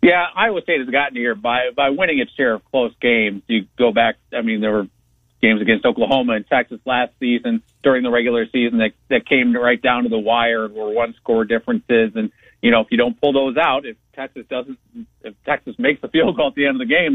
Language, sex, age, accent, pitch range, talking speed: English, male, 50-69, American, 115-155 Hz, 240 wpm